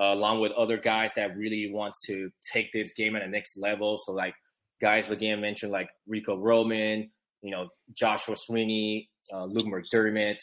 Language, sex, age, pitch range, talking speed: English, male, 20-39, 105-120 Hz, 180 wpm